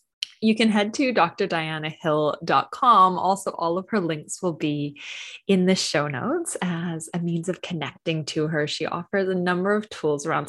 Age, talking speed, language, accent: 20-39, 170 wpm, English, American